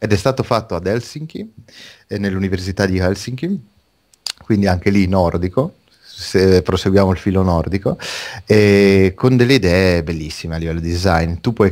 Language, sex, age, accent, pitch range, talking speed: Italian, male, 30-49, native, 90-110 Hz, 150 wpm